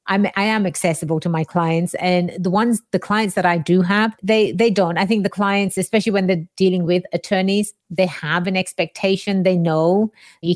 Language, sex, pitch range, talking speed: English, female, 170-210 Hz, 205 wpm